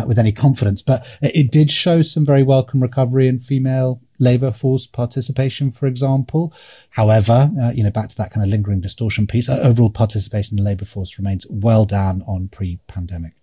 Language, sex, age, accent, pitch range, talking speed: English, male, 30-49, British, 105-135 Hz, 190 wpm